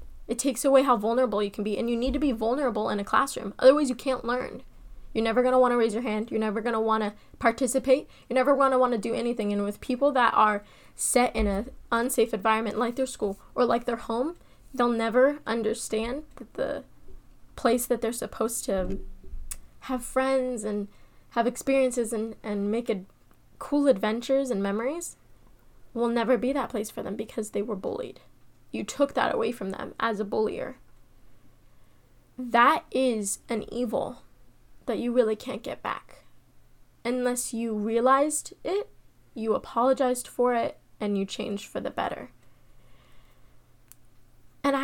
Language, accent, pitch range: English, American, 225-260 Hz